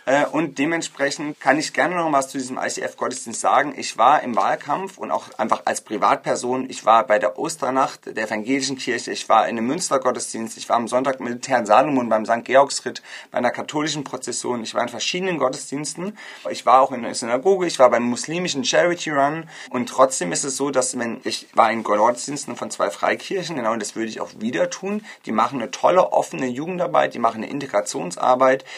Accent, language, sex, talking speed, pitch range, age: German, German, male, 200 wpm, 115-150 Hz, 30-49